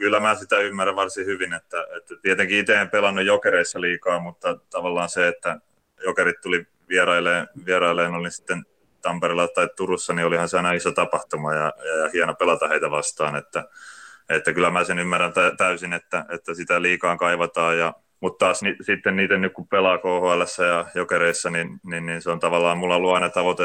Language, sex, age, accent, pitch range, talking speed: Finnish, male, 30-49, native, 85-95 Hz, 180 wpm